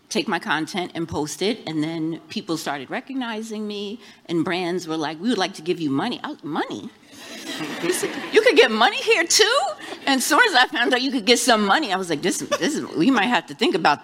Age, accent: 40-59, American